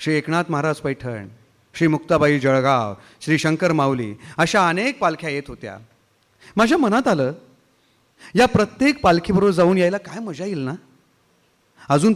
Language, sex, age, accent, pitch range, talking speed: Marathi, male, 30-49, native, 150-200 Hz, 140 wpm